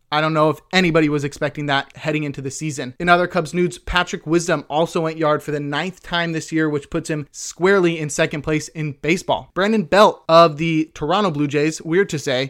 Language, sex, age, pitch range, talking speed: English, male, 30-49, 155-185 Hz, 220 wpm